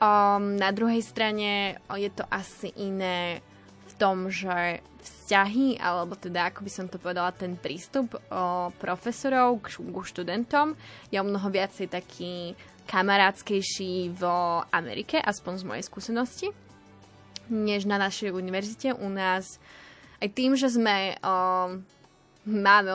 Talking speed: 120 wpm